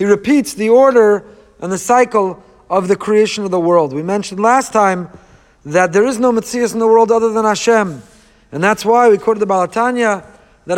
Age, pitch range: 40-59, 220-270 Hz